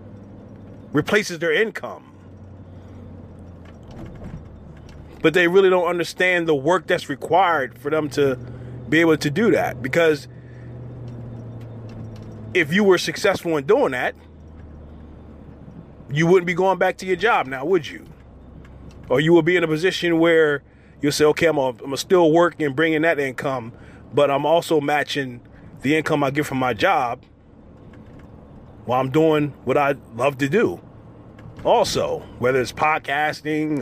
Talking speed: 145 wpm